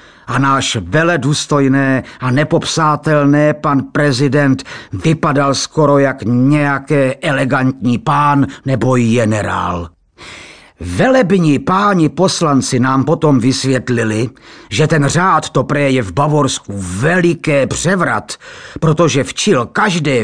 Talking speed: 100 wpm